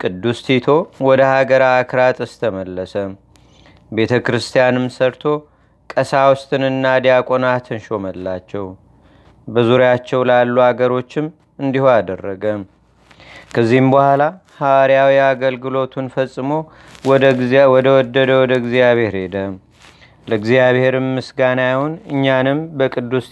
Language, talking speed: Amharic, 85 wpm